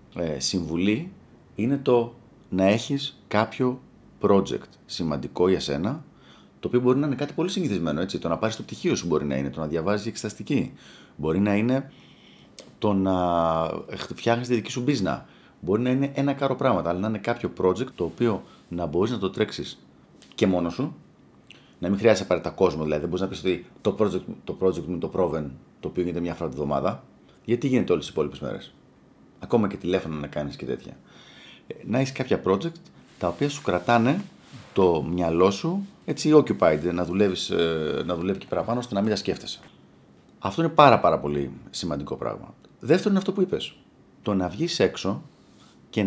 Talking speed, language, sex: 185 wpm, Greek, male